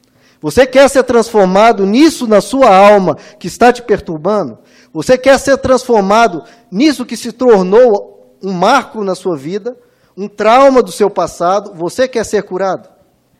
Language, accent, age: Portuguese, Brazilian, 20-39